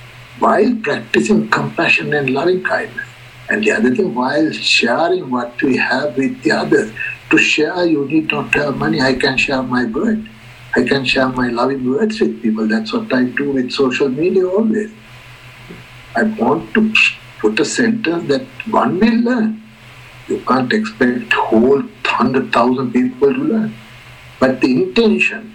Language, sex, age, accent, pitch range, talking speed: English, male, 60-79, Indian, 125-185 Hz, 160 wpm